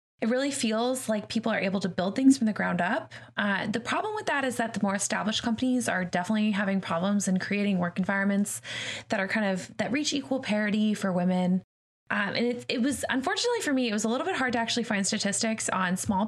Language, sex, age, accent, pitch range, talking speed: English, female, 20-39, American, 200-245 Hz, 230 wpm